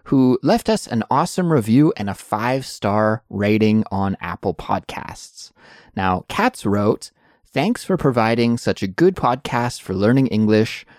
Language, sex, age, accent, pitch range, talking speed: English, male, 20-39, American, 100-150 Hz, 140 wpm